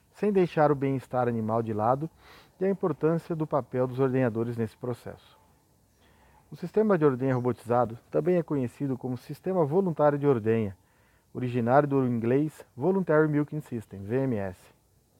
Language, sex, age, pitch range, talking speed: Portuguese, male, 40-59, 120-155 Hz, 140 wpm